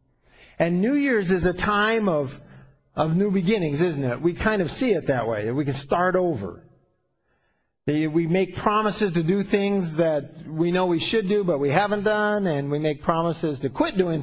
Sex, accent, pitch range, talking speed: male, American, 140-210 Hz, 195 wpm